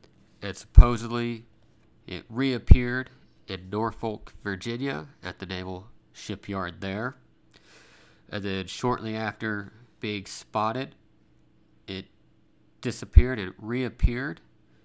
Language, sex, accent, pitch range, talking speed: English, male, American, 100-120 Hz, 90 wpm